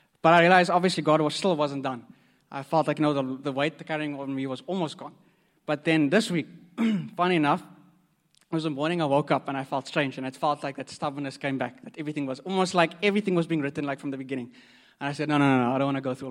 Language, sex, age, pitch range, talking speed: English, male, 20-39, 135-160 Hz, 275 wpm